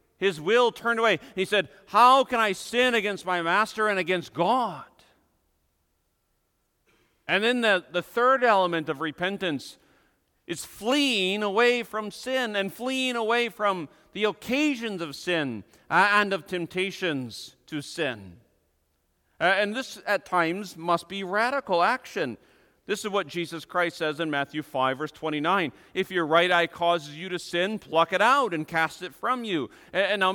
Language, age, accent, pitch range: English, 40-59, American, 160-220 Hz